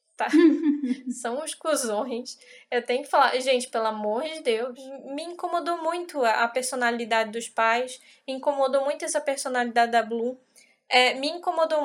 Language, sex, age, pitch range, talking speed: Portuguese, female, 10-29, 240-305 Hz, 145 wpm